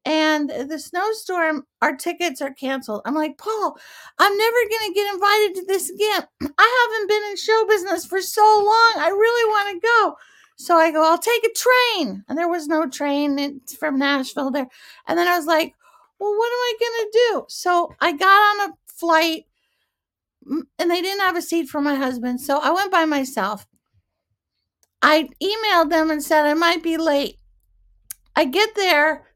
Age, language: 50-69, English